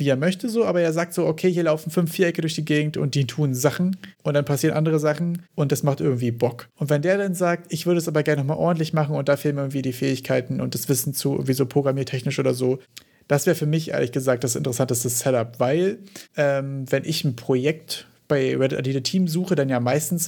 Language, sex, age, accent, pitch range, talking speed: German, male, 40-59, German, 130-155 Hz, 245 wpm